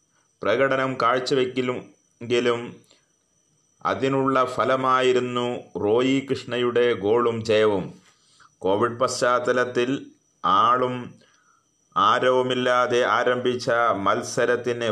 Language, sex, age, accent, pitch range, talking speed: Malayalam, male, 30-49, native, 120-140 Hz, 55 wpm